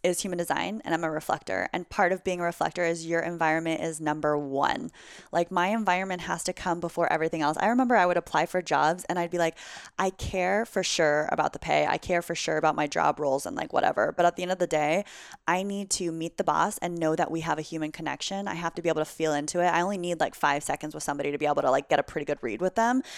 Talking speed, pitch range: 275 wpm, 160-180 Hz